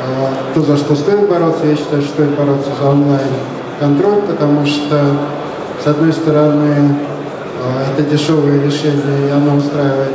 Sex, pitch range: male, 140-155 Hz